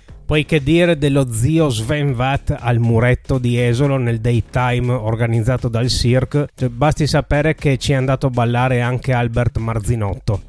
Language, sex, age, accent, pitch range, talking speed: Italian, male, 30-49, native, 115-150 Hz, 160 wpm